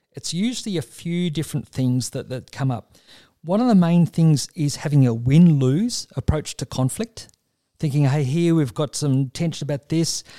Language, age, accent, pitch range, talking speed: English, 40-59, Australian, 130-170 Hz, 180 wpm